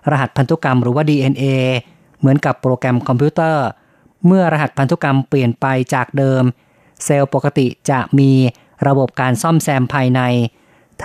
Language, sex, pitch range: Thai, female, 130-150 Hz